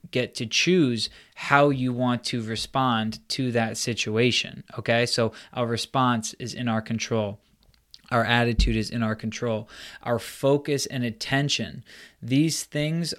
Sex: male